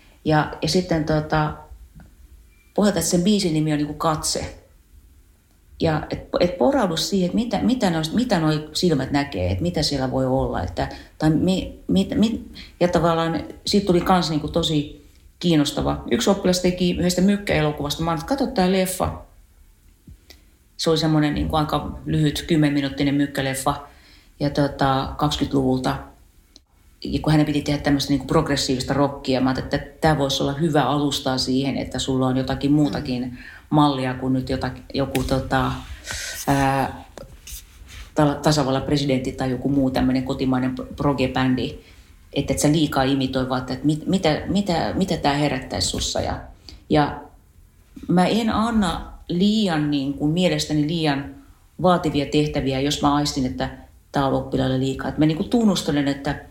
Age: 40-59